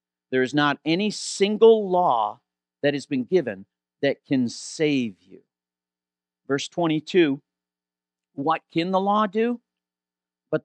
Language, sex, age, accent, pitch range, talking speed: English, male, 50-69, American, 125-195 Hz, 125 wpm